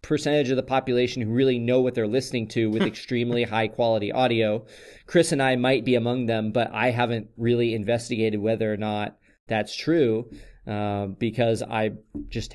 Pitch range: 110-140 Hz